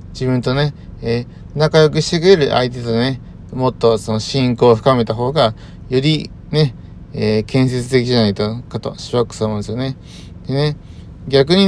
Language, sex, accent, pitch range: Japanese, male, native, 115-150 Hz